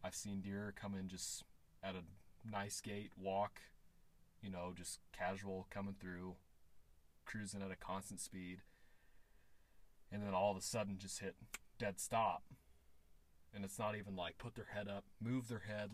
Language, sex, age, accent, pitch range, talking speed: English, male, 30-49, American, 80-100 Hz, 165 wpm